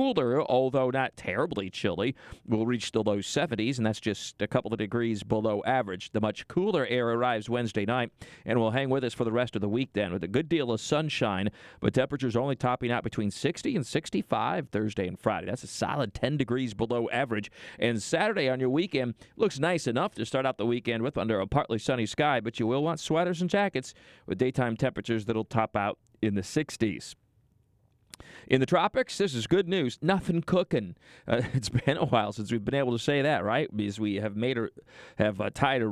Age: 40-59